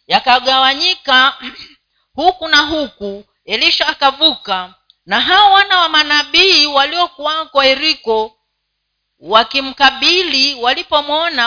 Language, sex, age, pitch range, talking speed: Swahili, female, 40-59, 255-330 Hz, 80 wpm